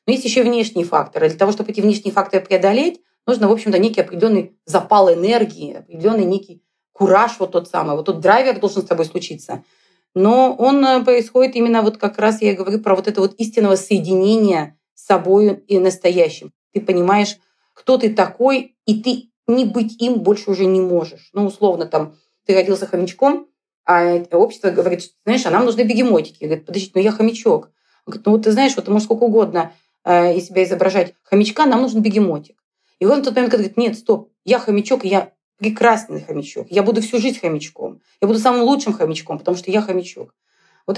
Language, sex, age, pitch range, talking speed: Russian, female, 30-49, 190-235 Hz, 195 wpm